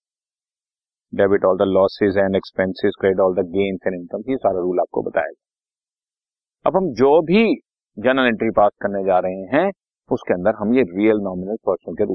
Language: Hindi